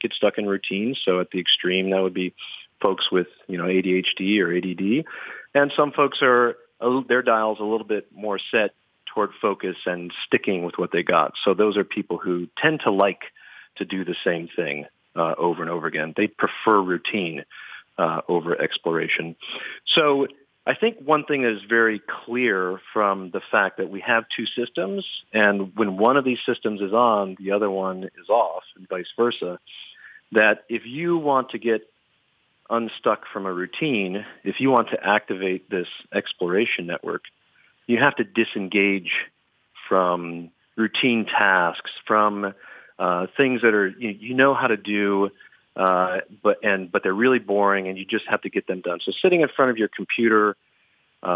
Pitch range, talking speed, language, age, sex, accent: 95-120 Hz, 180 wpm, English, 40-59, male, American